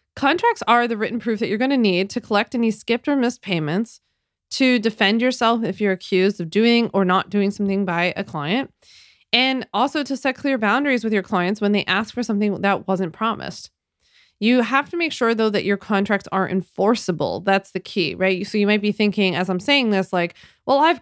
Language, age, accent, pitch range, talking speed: English, 20-39, American, 190-235 Hz, 215 wpm